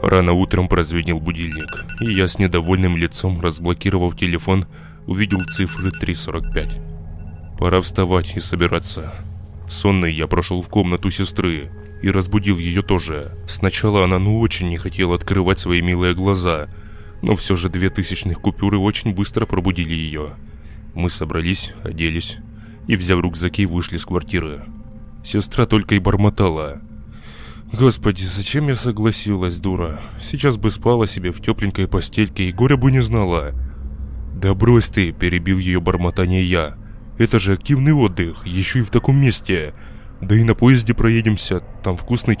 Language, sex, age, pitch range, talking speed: Russian, male, 20-39, 85-110 Hz, 145 wpm